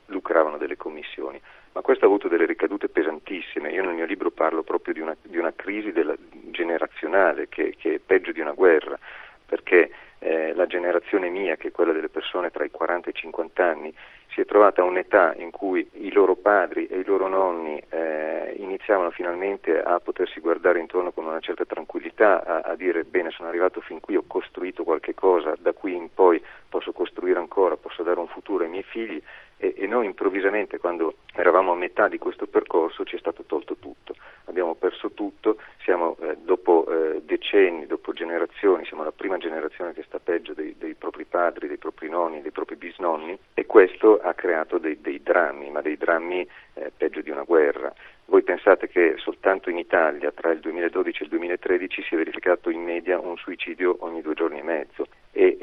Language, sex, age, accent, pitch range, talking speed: Italian, male, 40-59, native, 345-415 Hz, 195 wpm